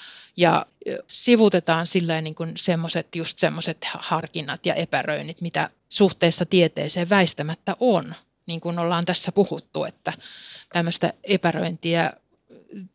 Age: 30-49